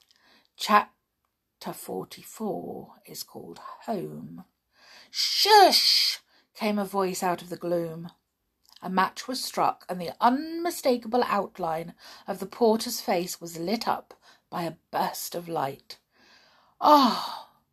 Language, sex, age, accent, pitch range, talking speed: English, female, 50-69, British, 180-275 Hz, 115 wpm